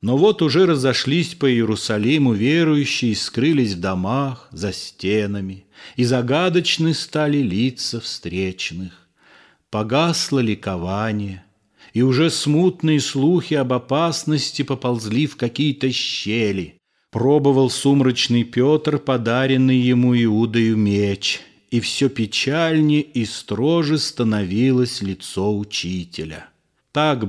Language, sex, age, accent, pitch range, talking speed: Russian, male, 40-59, native, 105-135 Hz, 100 wpm